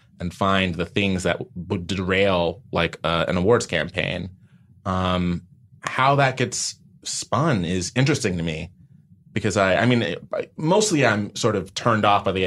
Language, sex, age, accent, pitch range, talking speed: English, male, 30-49, American, 95-125 Hz, 170 wpm